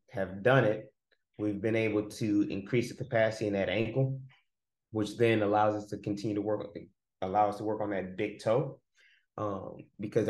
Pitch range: 105-120 Hz